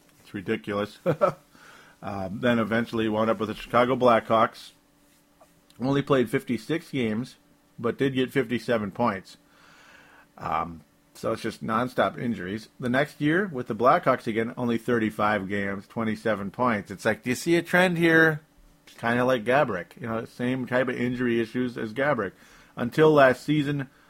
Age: 50-69